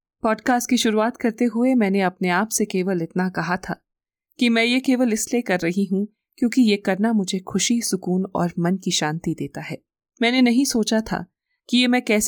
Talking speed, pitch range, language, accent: 180 wpm, 185-245 Hz, Hindi, native